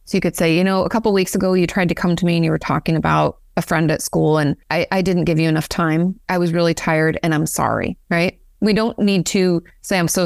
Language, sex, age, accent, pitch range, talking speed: English, female, 30-49, American, 170-210 Hz, 280 wpm